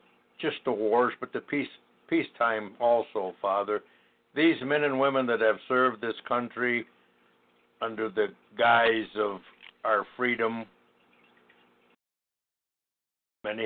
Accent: American